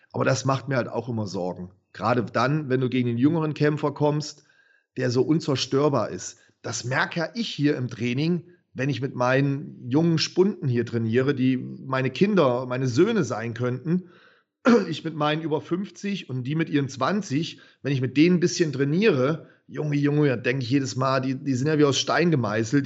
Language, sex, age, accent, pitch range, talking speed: German, male, 40-59, German, 125-155 Hz, 195 wpm